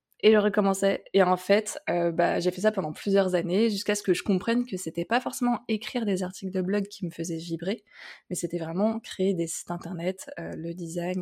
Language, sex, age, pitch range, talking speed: French, female, 20-39, 175-210 Hz, 225 wpm